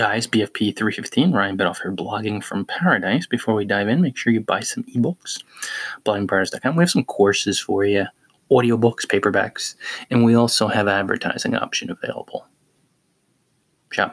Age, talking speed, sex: 20-39, 150 wpm, male